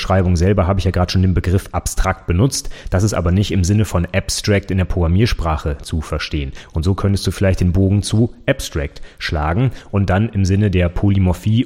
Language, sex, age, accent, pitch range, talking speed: German, male, 30-49, German, 85-105 Hz, 205 wpm